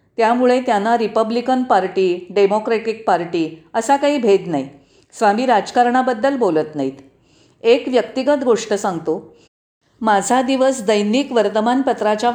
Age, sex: 40-59, female